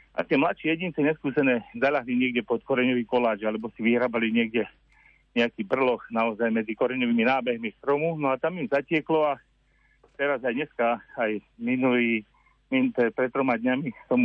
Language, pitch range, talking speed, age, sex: Slovak, 110-135 Hz, 150 wpm, 40-59, male